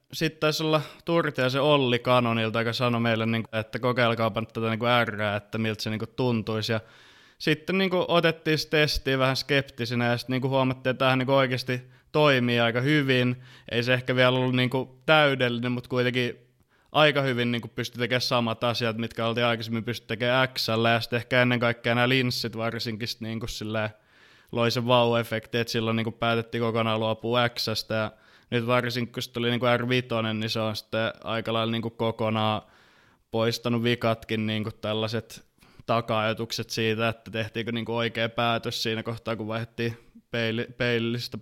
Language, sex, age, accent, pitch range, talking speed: Finnish, male, 20-39, native, 115-125 Hz, 145 wpm